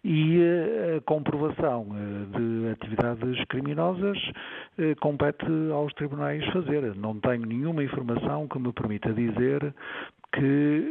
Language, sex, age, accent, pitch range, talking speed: Portuguese, male, 50-69, Portuguese, 115-150 Hz, 105 wpm